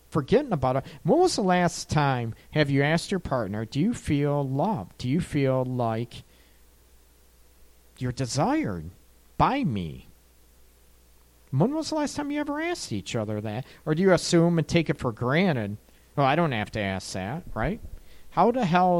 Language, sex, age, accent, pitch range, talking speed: English, male, 40-59, American, 115-155 Hz, 175 wpm